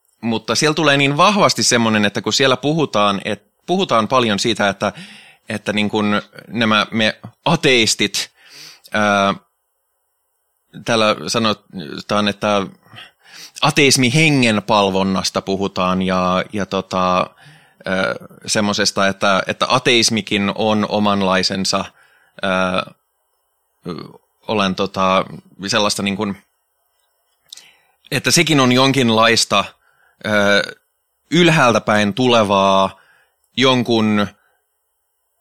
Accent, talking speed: native, 85 wpm